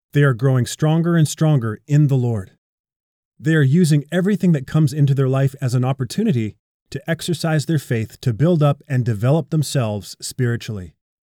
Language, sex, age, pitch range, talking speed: English, male, 30-49, 115-155 Hz, 170 wpm